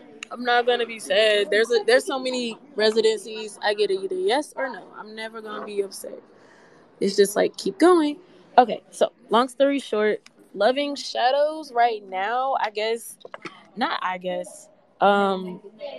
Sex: female